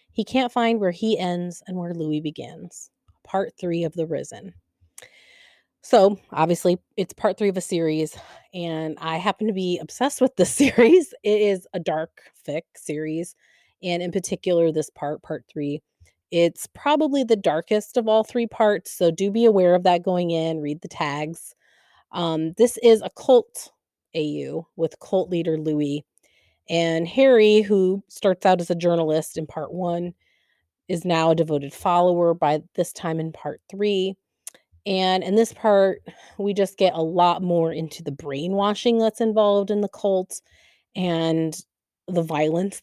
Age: 30-49